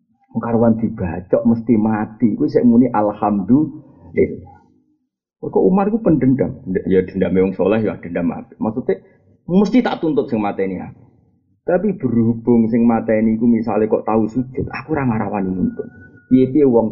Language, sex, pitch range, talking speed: Indonesian, male, 105-145 Hz, 120 wpm